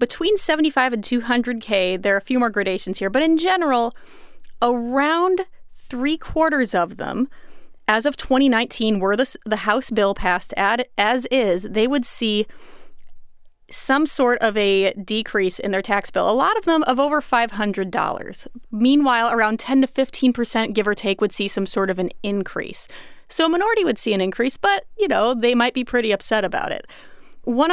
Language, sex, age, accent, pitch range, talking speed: English, female, 30-49, American, 205-255 Hz, 180 wpm